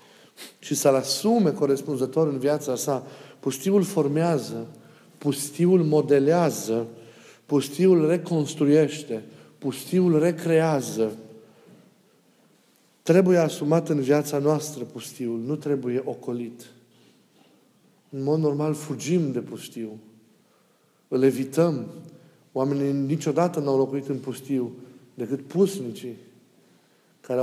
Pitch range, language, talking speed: 130-155 Hz, Romanian, 90 wpm